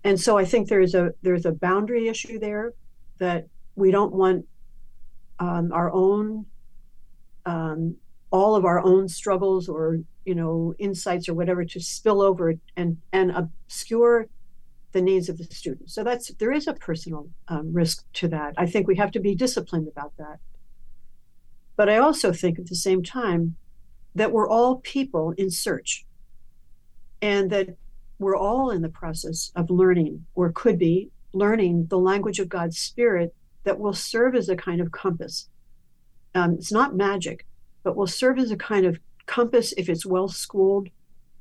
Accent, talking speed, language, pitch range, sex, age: American, 170 wpm, English, 170-205 Hz, female, 60-79